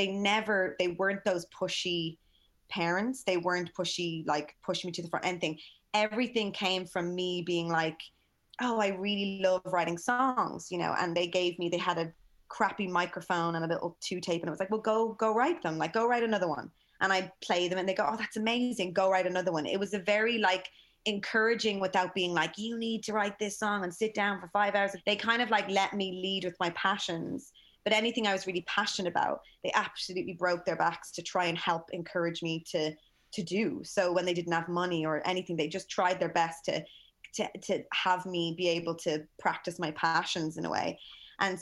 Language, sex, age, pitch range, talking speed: English, female, 20-39, 175-205 Hz, 220 wpm